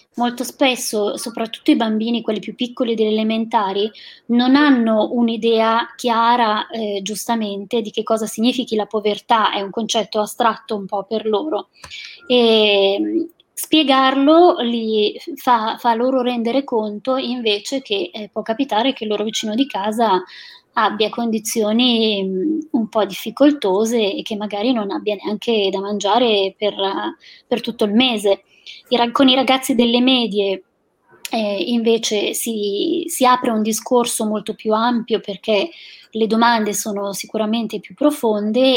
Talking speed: 140 wpm